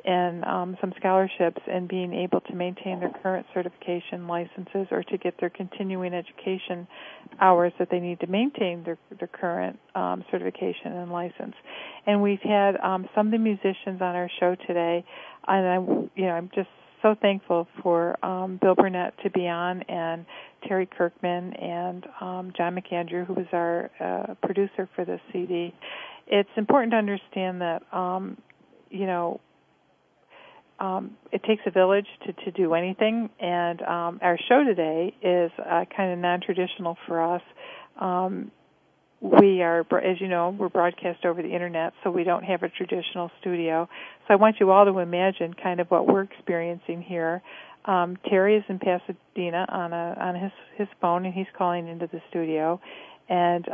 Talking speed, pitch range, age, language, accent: 170 wpm, 175-195 Hz, 50-69, English, American